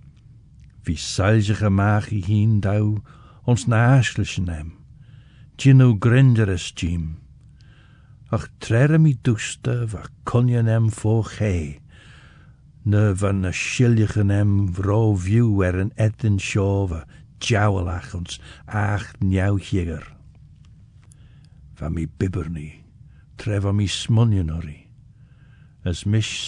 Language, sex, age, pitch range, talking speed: English, male, 60-79, 95-115 Hz, 85 wpm